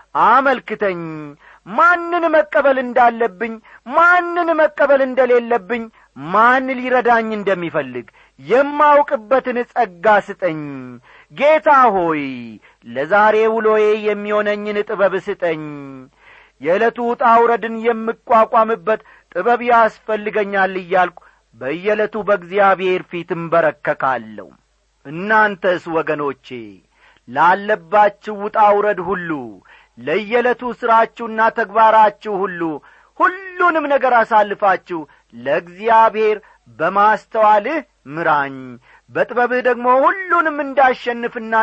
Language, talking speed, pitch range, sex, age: Amharic, 70 wpm, 165-240 Hz, male, 40-59